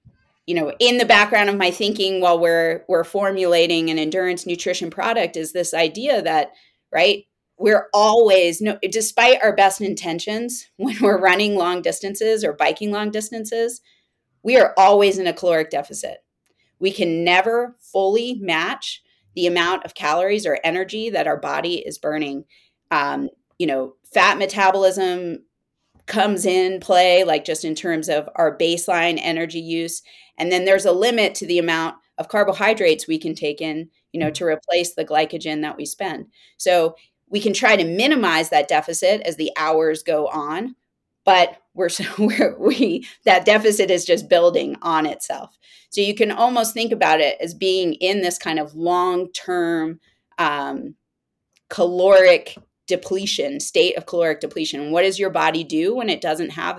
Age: 30-49